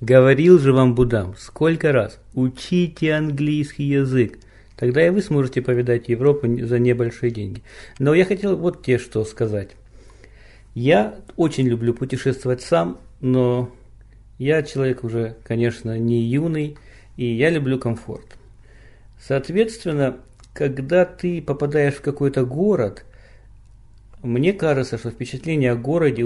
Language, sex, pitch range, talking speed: Russian, male, 110-140 Hz, 125 wpm